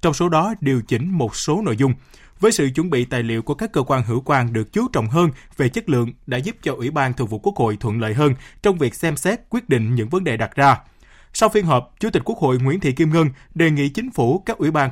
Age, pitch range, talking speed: 20-39, 125-175 Hz, 280 wpm